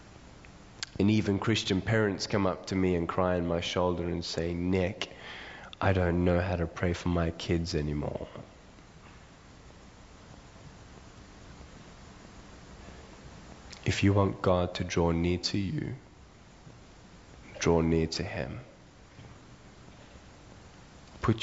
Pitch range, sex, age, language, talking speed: 80-95 Hz, male, 20-39, English, 110 wpm